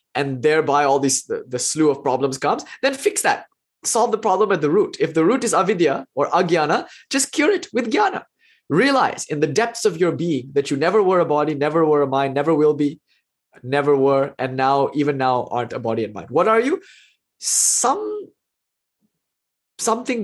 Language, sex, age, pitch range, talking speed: English, male, 20-39, 140-215 Hz, 200 wpm